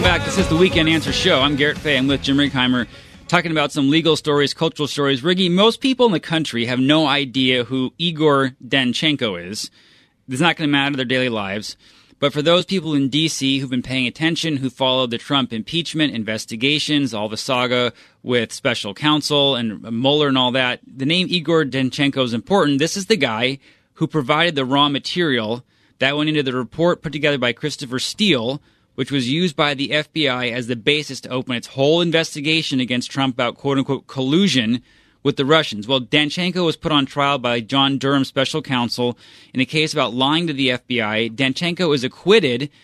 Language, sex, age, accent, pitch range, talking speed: English, male, 30-49, American, 130-155 Hz, 195 wpm